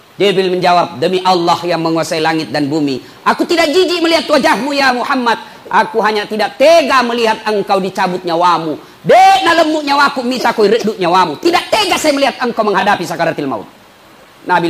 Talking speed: 160 wpm